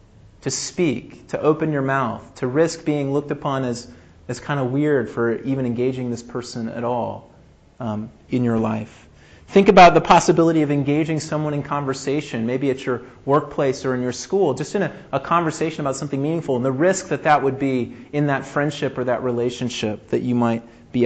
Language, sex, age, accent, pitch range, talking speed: English, male, 30-49, American, 115-145 Hz, 195 wpm